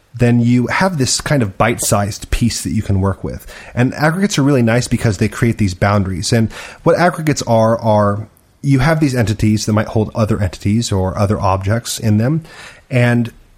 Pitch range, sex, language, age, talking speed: 105-130 Hz, male, English, 30-49, 190 wpm